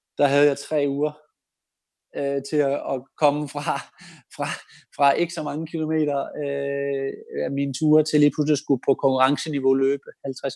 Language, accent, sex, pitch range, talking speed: Danish, native, male, 140-165 Hz, 160 wpm